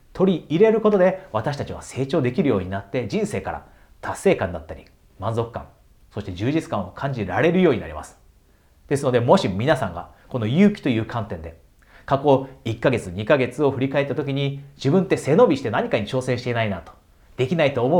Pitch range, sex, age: 105-145 Hz, male, 40-59